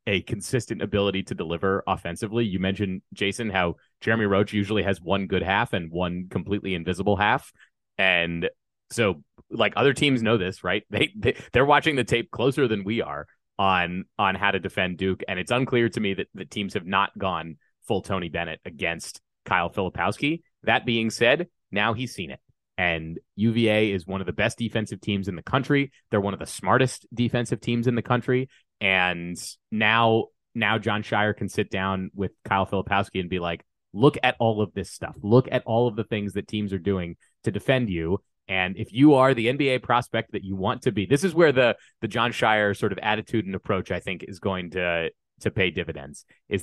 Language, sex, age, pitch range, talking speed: English, male, 30-49, 95-115 Hz, 205 wpm